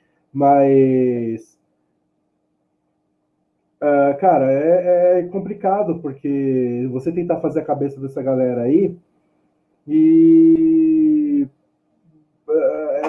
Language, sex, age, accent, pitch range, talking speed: Portuguese, male, 20-39, Brazilian, 135-175 Hz, 75 wpm